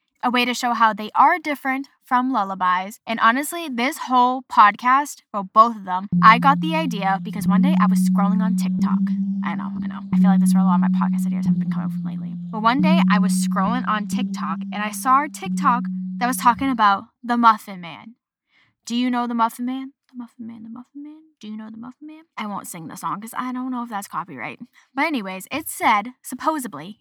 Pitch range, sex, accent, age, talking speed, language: 200-260 Hz, female, American, 10-29, 235 wpm, English